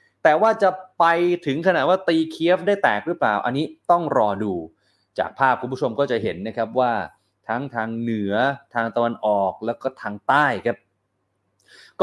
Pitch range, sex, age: 115-170 Hz, male, 30-49